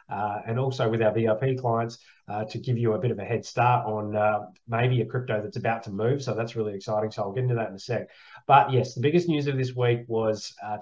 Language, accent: English, Australian